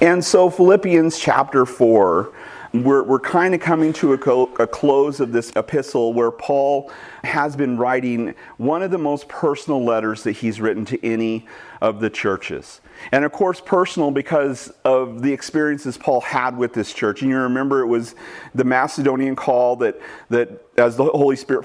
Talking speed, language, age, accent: 170 wpm, English, 40-59, American